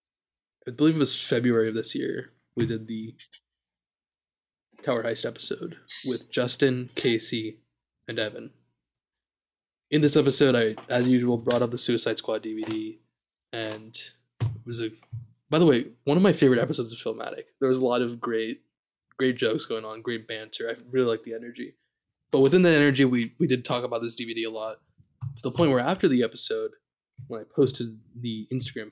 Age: 20-39